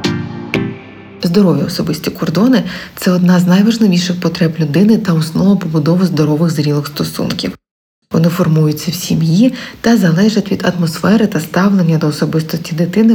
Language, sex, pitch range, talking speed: Ukrainian, female, 160-200 Hz, 130 wpm